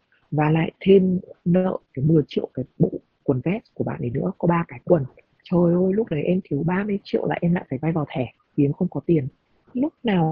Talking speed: 235 wpm